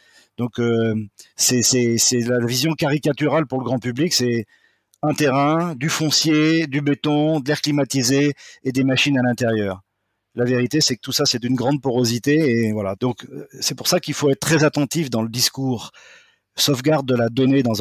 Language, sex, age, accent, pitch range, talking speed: French, male, 40-59, French, 115-145 Hz, 190 wpm